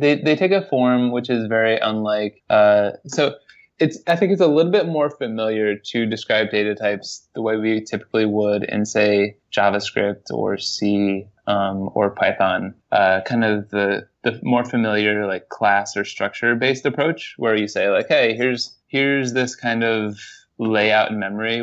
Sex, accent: male, American